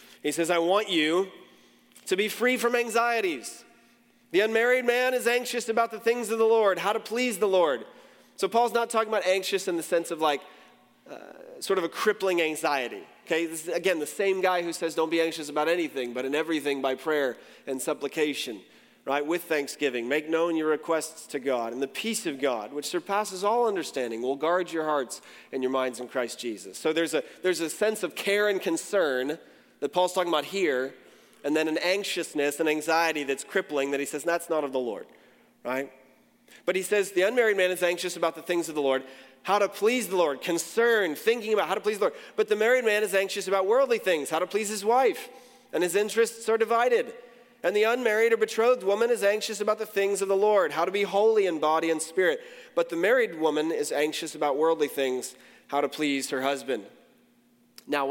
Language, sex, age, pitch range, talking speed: English, male, 30-49, 155-220 Hz, 215 wpm